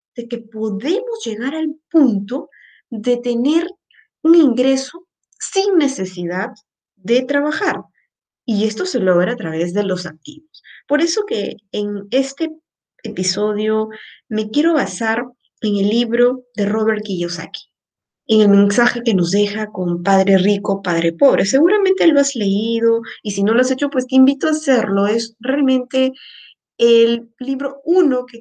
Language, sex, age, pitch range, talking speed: Spanish, female, 20-39, 205-270 Hz, 150 wpm